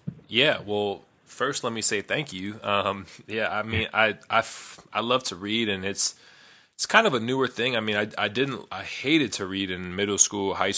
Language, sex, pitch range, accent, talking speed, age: English, male, 95-110 Hz, American, 225 wpm, 20-39